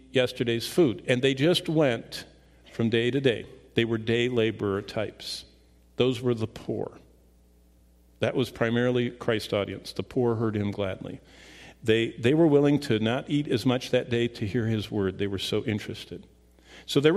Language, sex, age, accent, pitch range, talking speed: English, male, 50-69, American, 100-135 Hz, 175 wpm